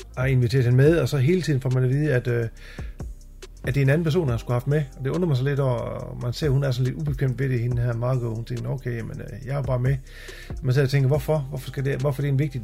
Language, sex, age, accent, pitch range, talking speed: English, male, 40-59, Danish, 120-145 Hz, 315 wpm